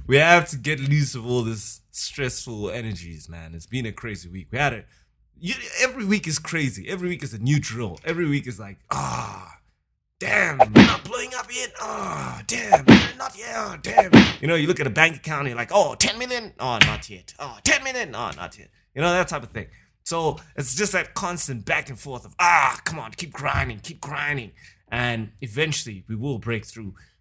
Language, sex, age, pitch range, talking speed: English, male, 20-39, 110-150 Hz, 220 wpm